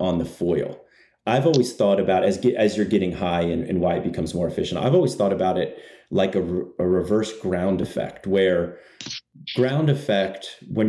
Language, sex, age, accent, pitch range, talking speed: English, male, 30-49, American, 90-120 Hz, 185 wpm